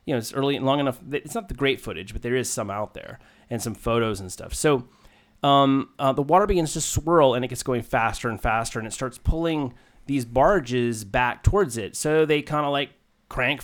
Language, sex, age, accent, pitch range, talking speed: English, male, 30-49, American, 115-140 Hz, 235 wpm